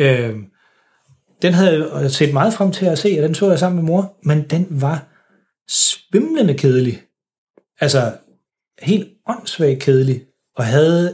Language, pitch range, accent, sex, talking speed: Danish, 130-155 Hz, native, male, 145 wpm